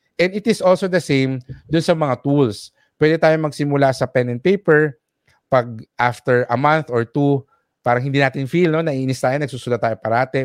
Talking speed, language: 190 wpm, English